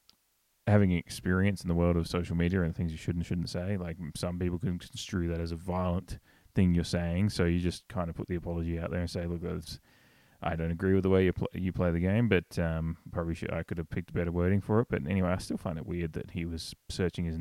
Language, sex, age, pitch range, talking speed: English, male, 20-39, 85-95 Hz, 260 wpm